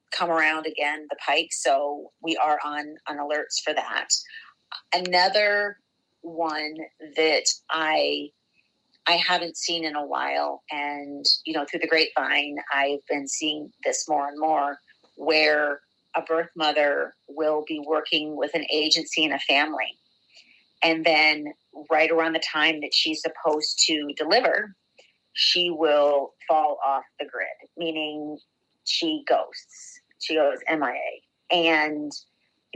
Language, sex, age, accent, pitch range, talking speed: English, female, 30-49, American, 145-165 Hz, 135 wpm